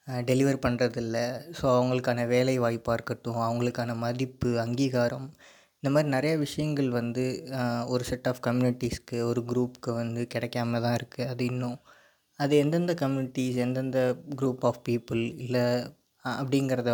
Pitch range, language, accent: 120-130 Hz, Tamil, native